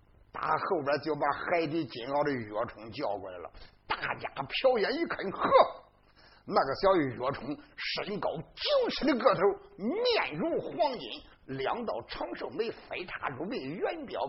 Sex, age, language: male, 50-69, Chinese